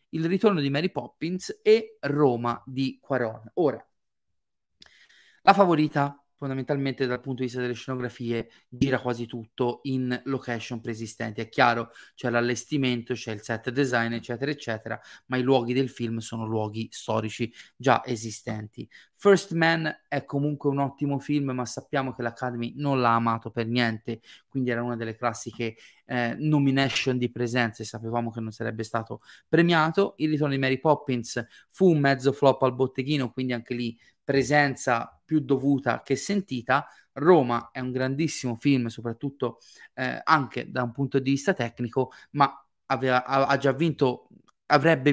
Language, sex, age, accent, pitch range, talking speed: Italian, male, 30-49, native, 120-145 Hz, 155 wpm